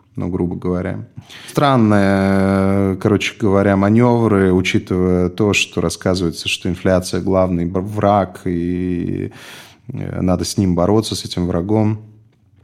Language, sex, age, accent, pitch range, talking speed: Russian, male, 20-39, native, 95-115 Hz, 110 wpm